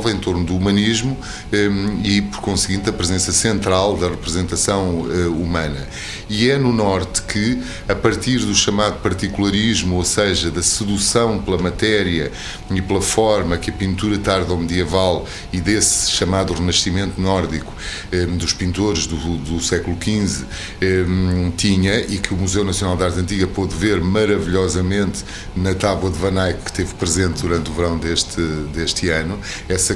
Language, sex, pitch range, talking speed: Portuguese, male, 90-105 Hz, 150 wpm